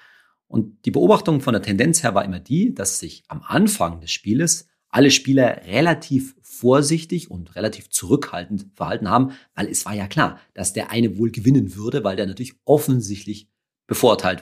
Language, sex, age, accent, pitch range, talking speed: German, male, 40-59, German, 100-145 Hz, 170 wpm